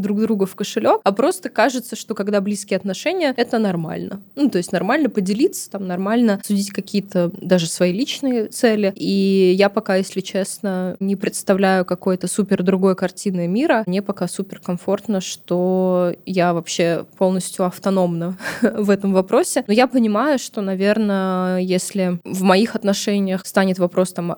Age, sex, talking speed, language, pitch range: 20-39, female, 150 wpm, Russian, 185-210 Hz